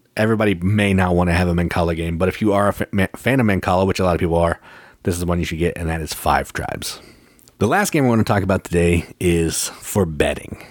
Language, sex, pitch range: English, male, 85-110 Hz